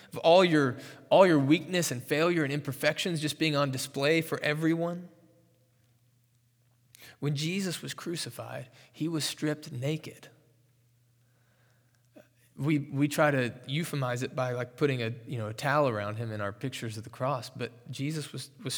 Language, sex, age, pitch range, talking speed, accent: English, male, 20-39, 130-175 Hz, 155 wpm, American